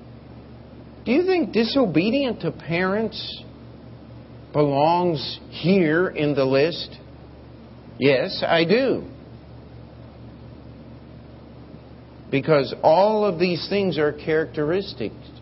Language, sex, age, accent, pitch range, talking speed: English, male, 50-69, American, 125-185 Hz, 80 wpm